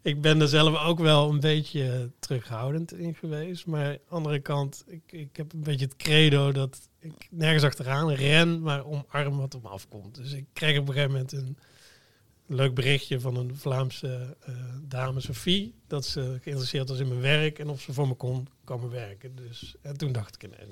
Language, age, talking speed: Dutch, 40-59, 205 wpm